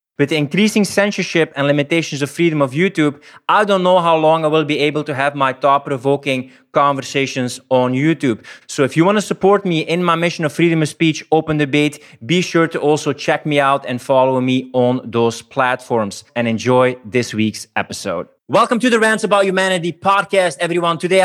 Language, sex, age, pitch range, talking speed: English, male, 20-39, 130-170 Hz, 195 wpm